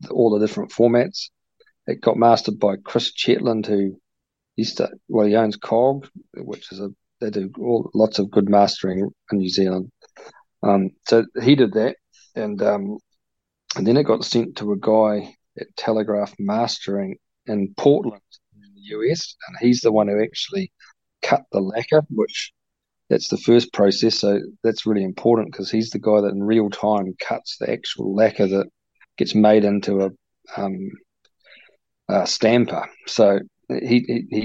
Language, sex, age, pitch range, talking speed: English, male, 40-59, 100-115 Hz, 165 wpm